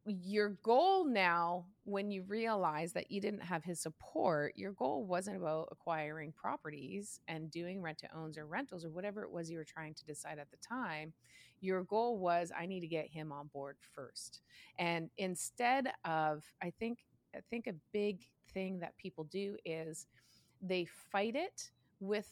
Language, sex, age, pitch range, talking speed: English, female, 30-49, 160-200 Hz, 175 wpm